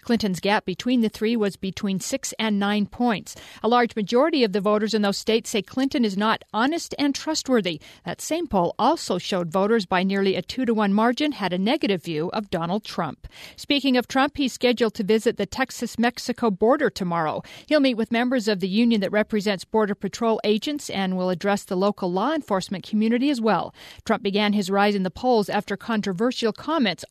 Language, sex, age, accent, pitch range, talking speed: English, female, 50-69, American, 195-245 Hz, 195 wpm